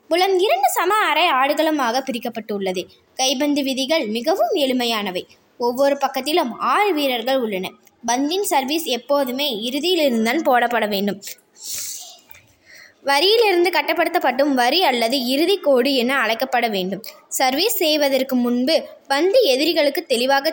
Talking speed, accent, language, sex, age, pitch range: 110 wpm, native, Tamil, female, 20-39, 245-340 Hz